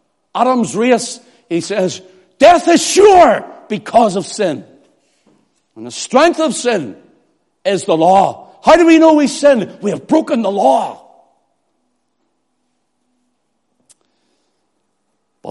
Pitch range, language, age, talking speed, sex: 145-245 Hz, English, 60-79, 115 wpm, male